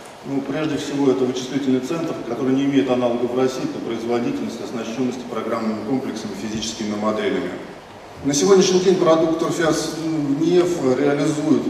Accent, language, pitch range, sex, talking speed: native, Russian, 120-140 Hz, male, 135 wpm